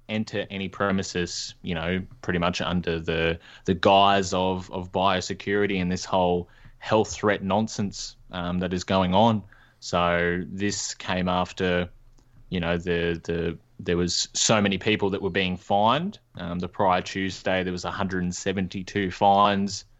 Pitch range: 90-100 Hz